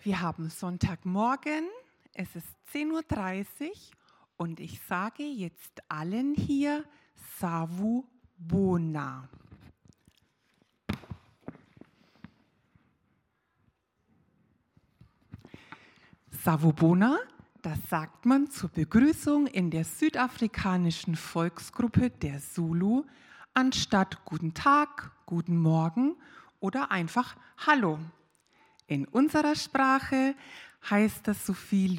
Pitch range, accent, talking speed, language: 170-255 Hz, German, 80 wpm, German